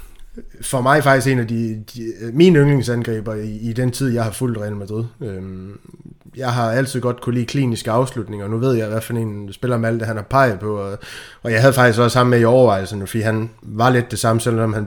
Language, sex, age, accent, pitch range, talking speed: Danish, male, 20-39, native, 110-125 Hz, 235 wpm